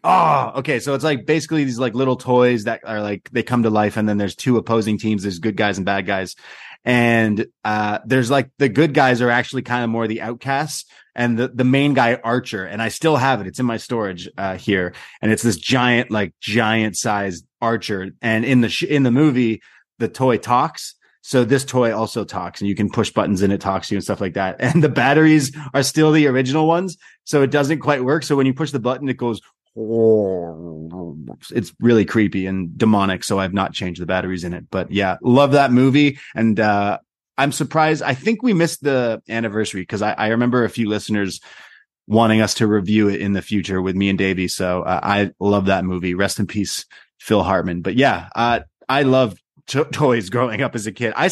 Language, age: English, 20-39